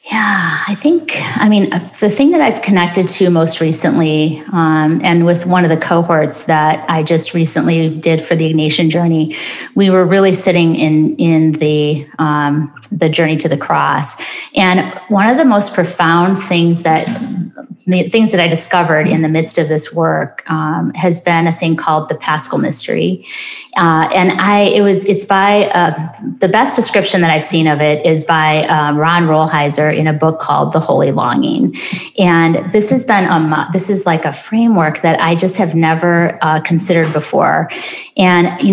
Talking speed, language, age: 185 wpm, English, 30-49